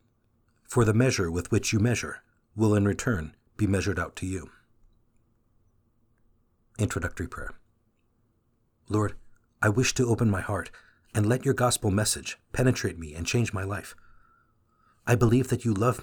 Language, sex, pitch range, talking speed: English, male, 100-115 Hz, 150 wpm